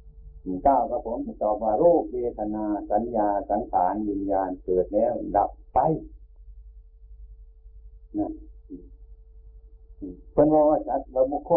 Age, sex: 60-79, male